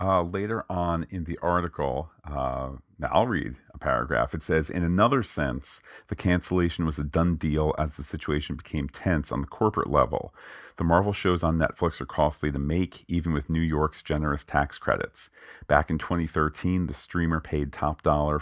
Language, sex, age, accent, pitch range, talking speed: English, male, 40-59, American, 75-85 Hz, 180 wpm